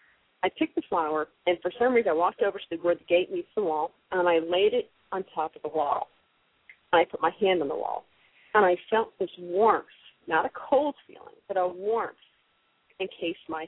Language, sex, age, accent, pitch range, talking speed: English, female, 40-59, American, 165-200 Hz, 215 wpm